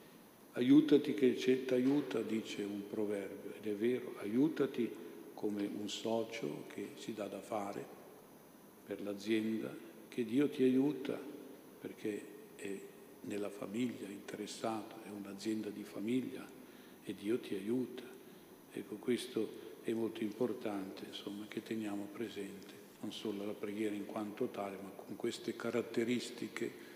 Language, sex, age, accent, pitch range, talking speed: Italian, male, 50-69, native, 105-120 Hz, 135 wpm